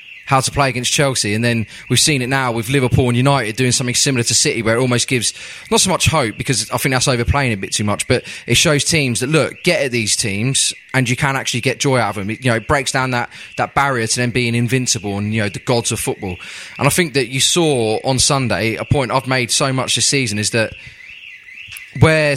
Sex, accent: male, British